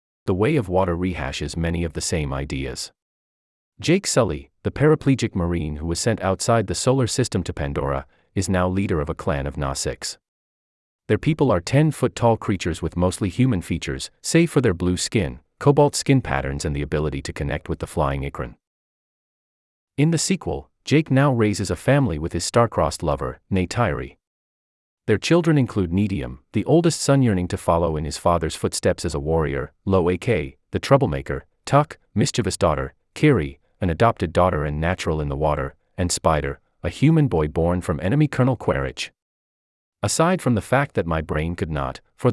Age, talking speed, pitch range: 30-49, 175 wpm, 75-115 Hz